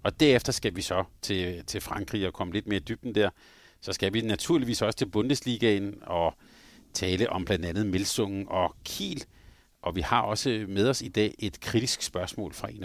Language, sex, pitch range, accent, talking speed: Danish, male, 100-125 Hz, native, 195 wpm